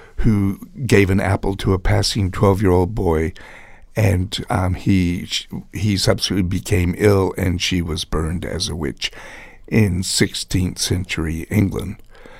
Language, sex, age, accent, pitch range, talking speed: English, male, 60-79, American, 90-110 Hz, 135 wpm